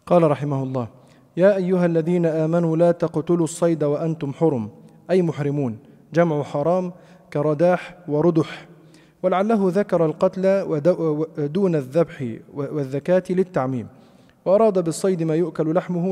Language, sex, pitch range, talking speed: Arabic, male, 145-180 Hz, 110 wpm